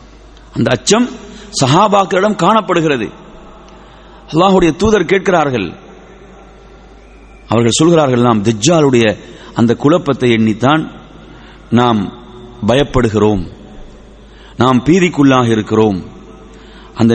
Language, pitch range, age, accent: English, 120-165 Hz, 30-49, Indian